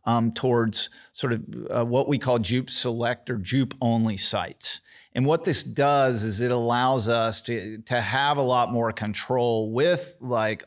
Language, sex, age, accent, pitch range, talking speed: English, male, 30-49, American, 110-125 Hz, 175 wpm